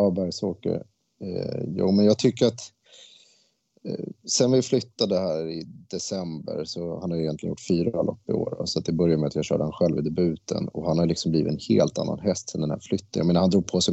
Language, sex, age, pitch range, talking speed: Swedish, male, 30-49, 80-95 Hz, 235 wpm